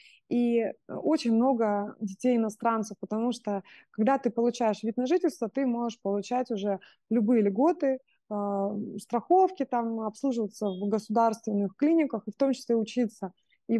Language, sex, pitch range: Russian, female, 210-260 Hz